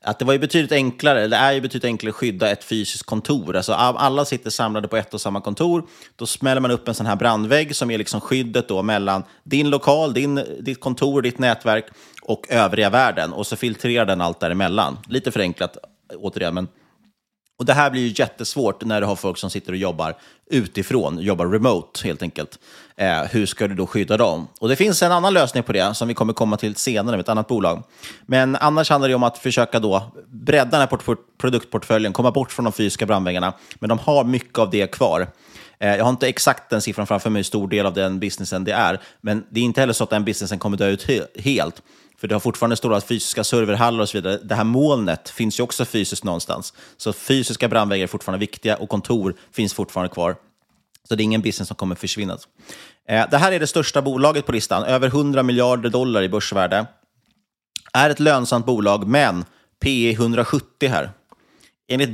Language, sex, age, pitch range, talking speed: Swedish, male, 30-49, 105-130 Hz, 215 wpm